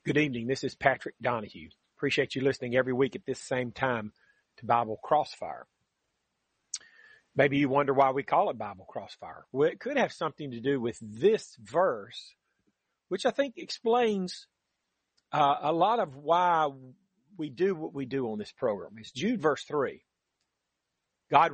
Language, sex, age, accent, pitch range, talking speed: English, male, 40-59, American, 130-180 Hz, 165 wpm